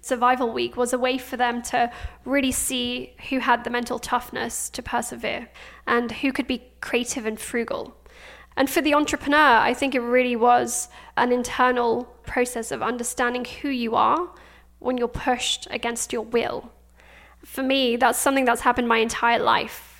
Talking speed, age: 170 wpm, 10-29